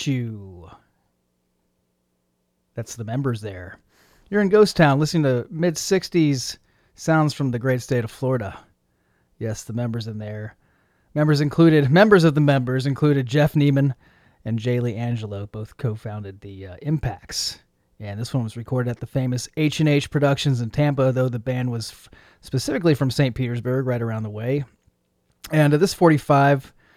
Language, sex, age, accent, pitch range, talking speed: English, male, 30-49, American, 110-145 Hz, 165 wpm